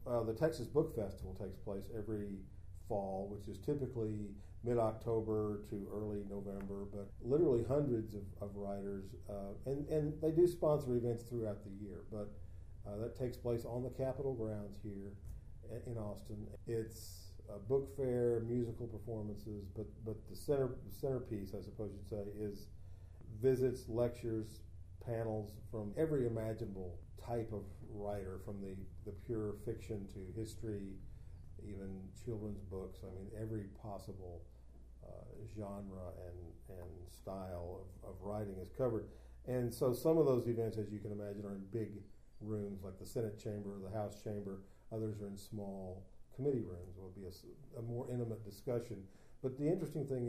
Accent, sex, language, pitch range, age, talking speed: American, male, English, 100-115 Hz, 40-59, 160 wpm